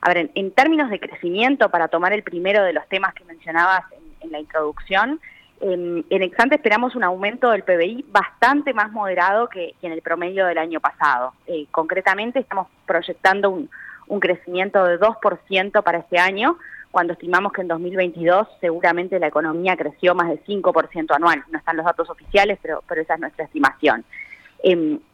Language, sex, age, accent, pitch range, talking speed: Spanish, female, 20-39, Argentinian, 180-245 Hz, 180 wpm